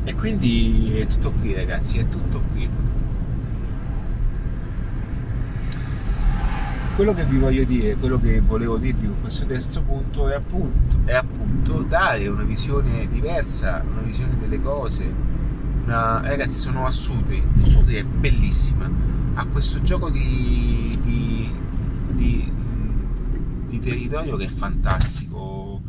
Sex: male